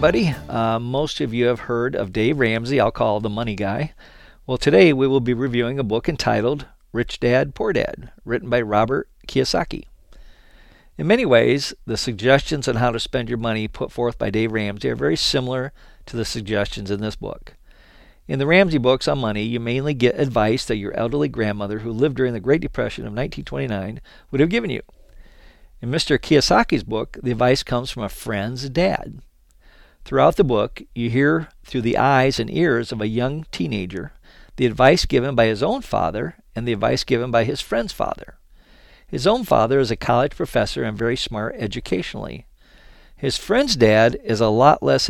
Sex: male